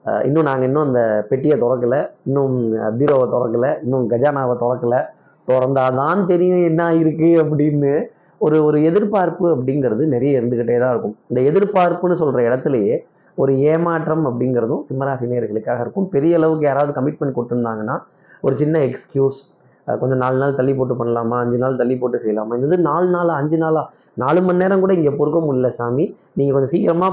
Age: 30-49